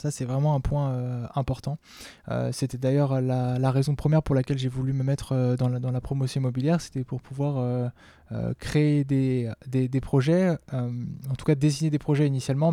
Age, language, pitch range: 20-39, French, 125-150 Hz